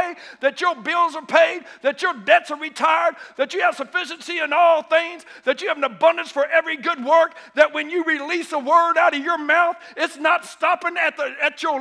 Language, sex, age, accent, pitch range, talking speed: English, male, 50-69, American, 285-345 Hz, 220 wpm